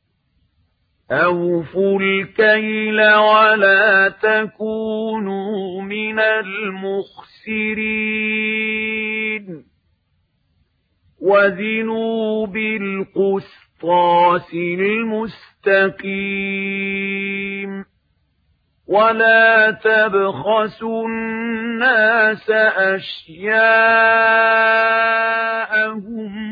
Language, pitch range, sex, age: Arabic, 170-215 Hz, male, 50-69